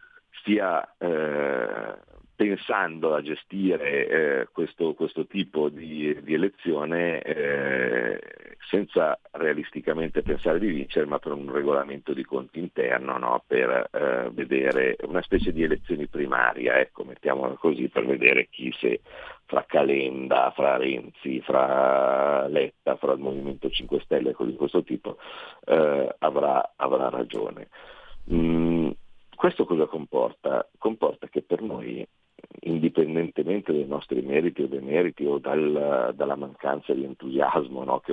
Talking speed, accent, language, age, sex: 130 wpm, native, Italian, 50-69, male